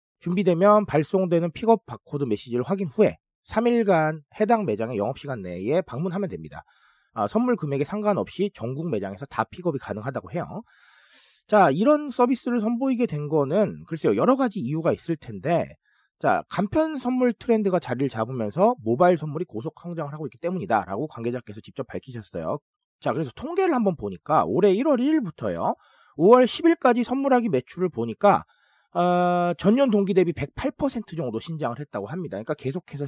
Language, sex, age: Korean, male, 40-59